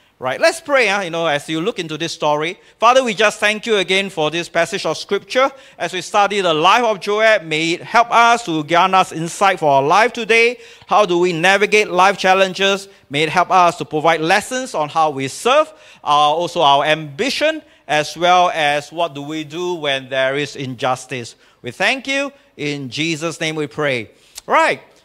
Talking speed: 200 wpm